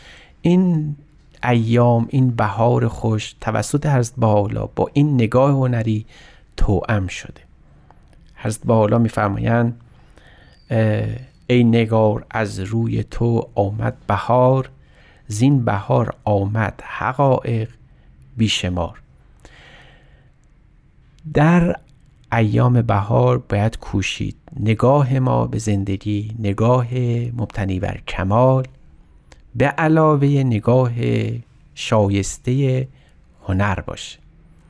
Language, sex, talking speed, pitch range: Persian, male, 85 wpm, 105-130 Hz